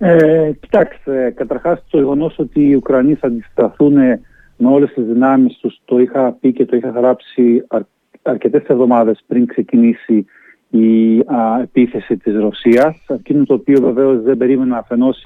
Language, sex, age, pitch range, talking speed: Greek, male, 40-59, 120-150 Hz, 140 wpm